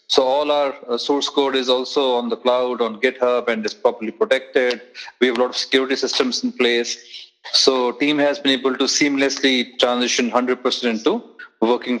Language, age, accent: English, 30-49, Indian